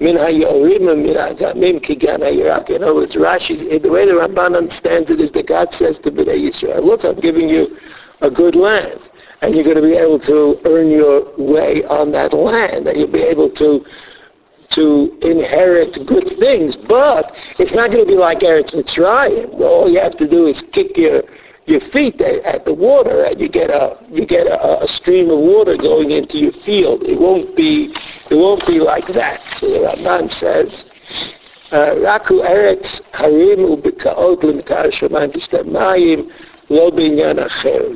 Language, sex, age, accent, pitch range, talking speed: English, male, 60-79, American, 305-440 Hz, 160 wpm